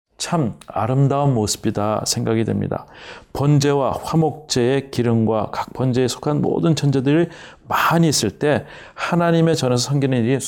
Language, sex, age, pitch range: Korean, male, 40-59, 110-140 Hz